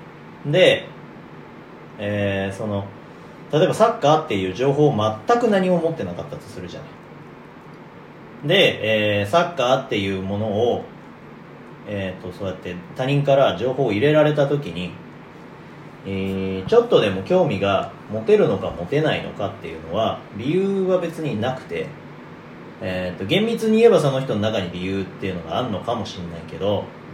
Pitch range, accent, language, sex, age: 95-160 Hz, native, Japanese, male, 30-49